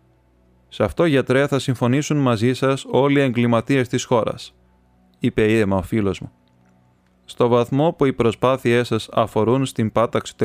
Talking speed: 155 wpm